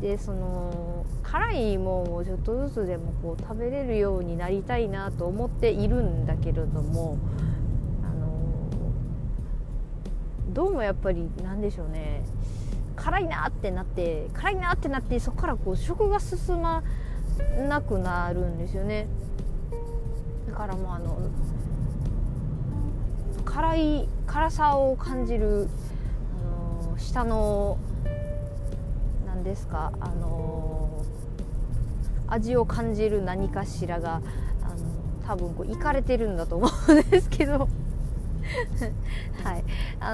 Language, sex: Japanese, female